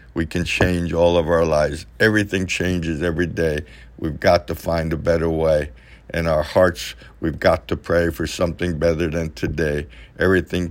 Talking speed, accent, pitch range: 175 wpm, American, 75-95 Hz